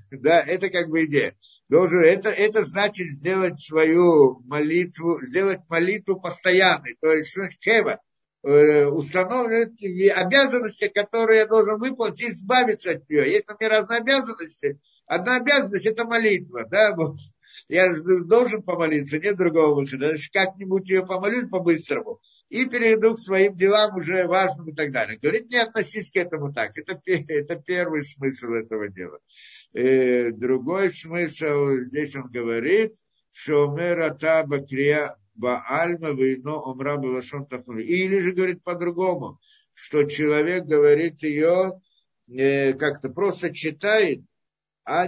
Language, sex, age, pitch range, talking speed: Russian, male, 50-69, 145-205 Hz, 120 wpm